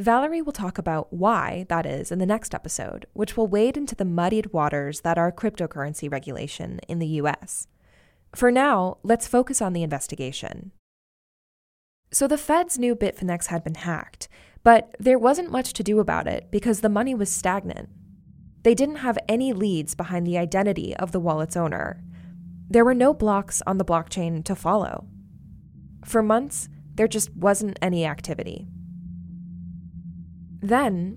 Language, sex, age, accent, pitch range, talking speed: English, female, 10-29, American, 155-220 Hz, 160 wpm